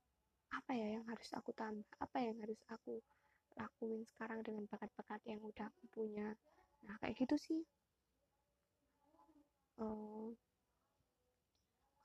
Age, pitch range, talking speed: 20-39, 215-270 Hz, 110 wpm